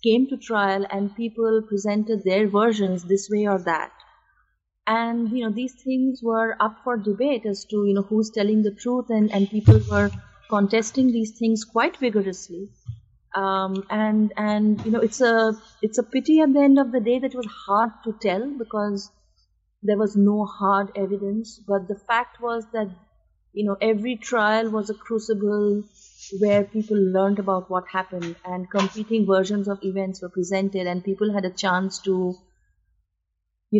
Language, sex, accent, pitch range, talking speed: English, female, Indian, 190-220 Hz, 175 wpm